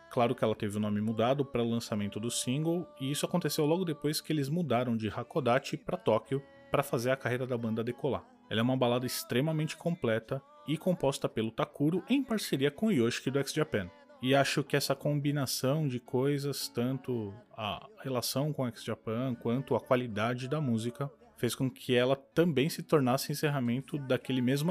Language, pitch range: Portuguese, 120-150 Hz